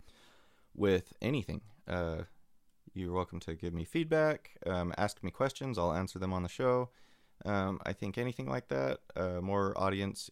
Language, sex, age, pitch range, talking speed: English, male, 30-49, 85-100 Hz, 165 wpm